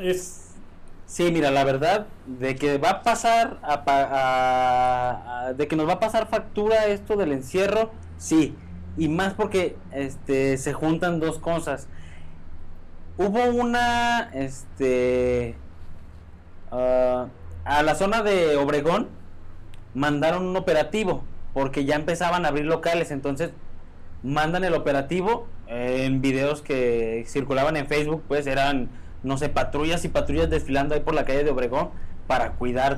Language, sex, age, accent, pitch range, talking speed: Spanish, male, 20-39, Mexican, 120-170 Hz, 135 wpm